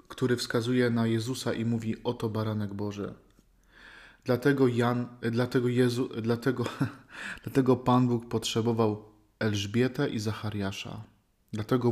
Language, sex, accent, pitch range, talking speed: Polish, male, native, 110-125 Hz, 110 wpm